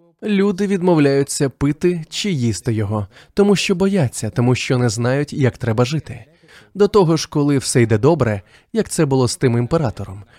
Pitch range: 120-170 Hz